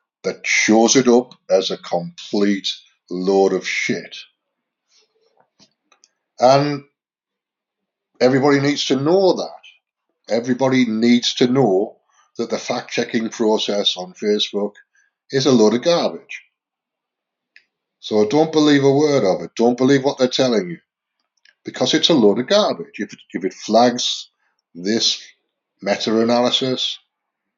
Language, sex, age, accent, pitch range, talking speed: English, male, 50-69, British, 110-135 Hz, 125 wpm